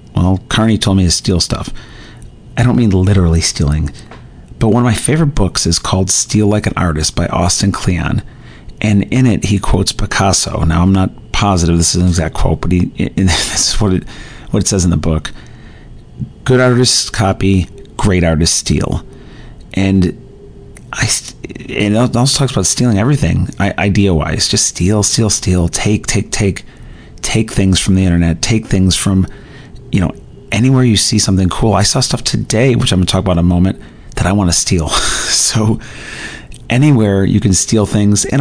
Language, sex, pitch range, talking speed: English, male, 90-115 Hz, 185 wpm